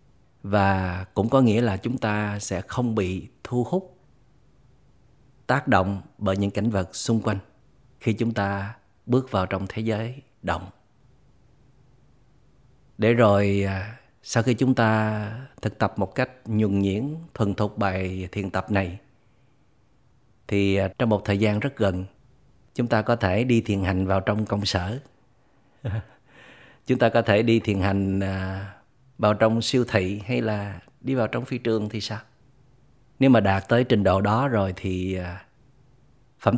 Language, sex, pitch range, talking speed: Vietnamese, male, 100-130 Hz, 155 wpm